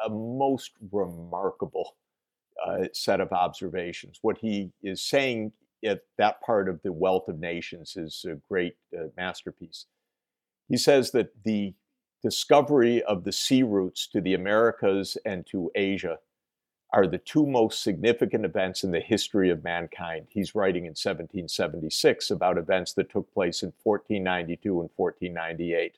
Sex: male